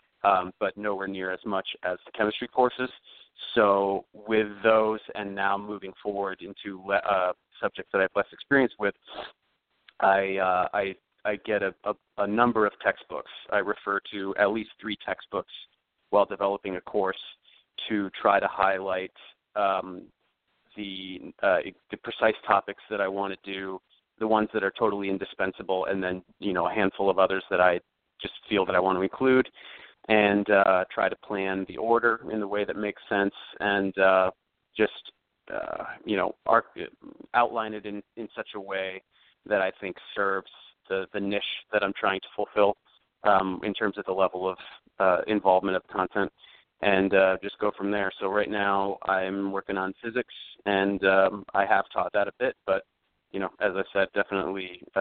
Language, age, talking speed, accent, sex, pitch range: English, 30-49, 180 wpm, American, male, 95-105 Hz